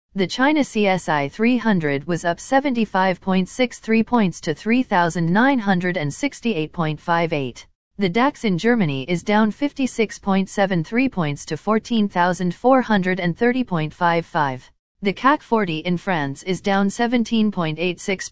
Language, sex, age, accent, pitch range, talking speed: English, female, 40-59, American, 165-230 Hz, 90 wpm